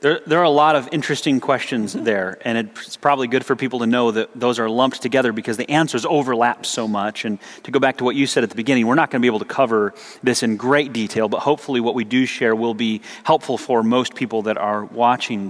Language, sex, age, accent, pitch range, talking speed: English, male, 30-49, American, 115-140 Hz, 250 wpm